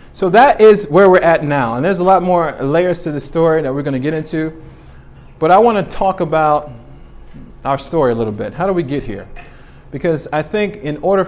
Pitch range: 125-170 Hz